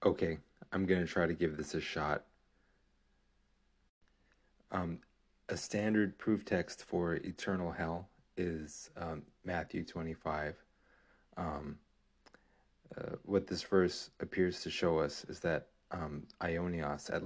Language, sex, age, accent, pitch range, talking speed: English, male, 40-59, American, 80-90 Hz, 125 wpm